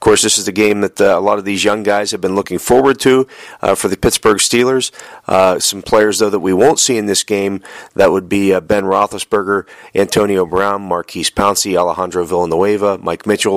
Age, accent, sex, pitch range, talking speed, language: 40-59, American, male, 90-105 Hz, 215 wpm, English